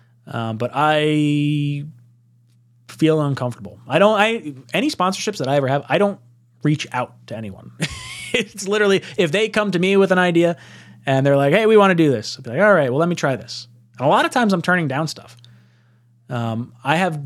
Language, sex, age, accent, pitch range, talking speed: English, male, 20-39, American, 120-160 Hz, 210 wpm